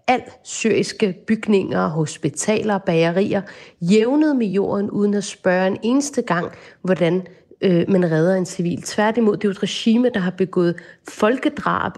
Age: 30-49